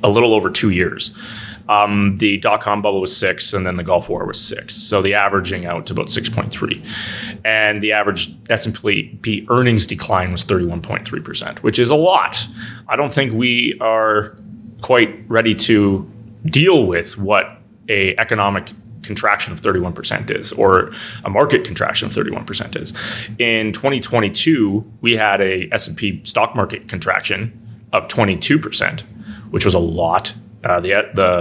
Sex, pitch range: male, 100-115 Hz